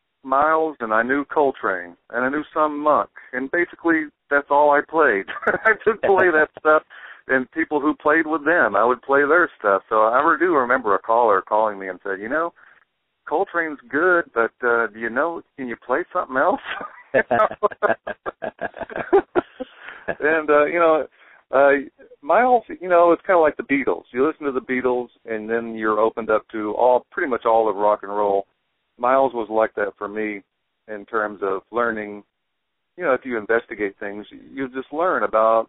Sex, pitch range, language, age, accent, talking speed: male, 110-150 Hz, English, 50-69, American, 190 wpm